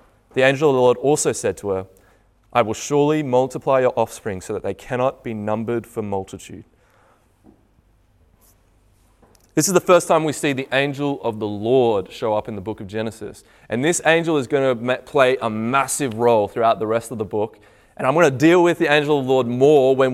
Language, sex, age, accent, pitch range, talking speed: English, male, 20-39, Australian, 125-180 Hz, 205 wpm